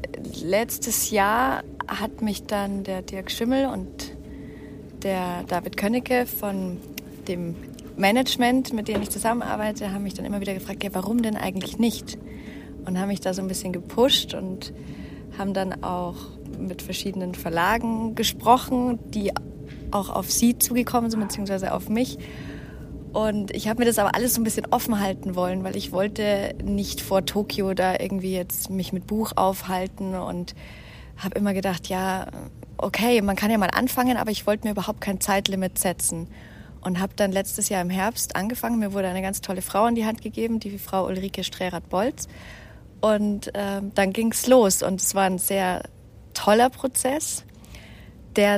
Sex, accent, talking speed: female, German, 170 wpm